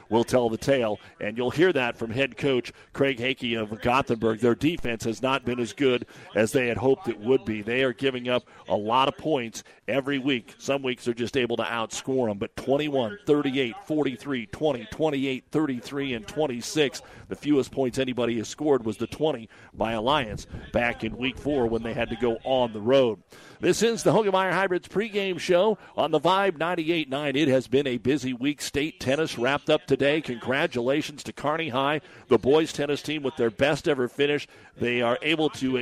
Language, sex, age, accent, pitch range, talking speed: English, male, 50-69, American, 120-145 Hz, 200 wpm